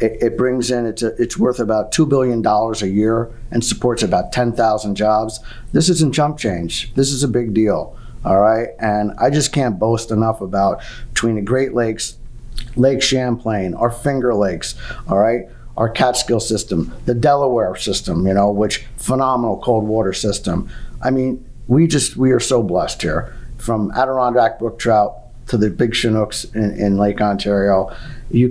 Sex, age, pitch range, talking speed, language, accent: male, 50-69, 105-125 Hz, 175 wpm, English, American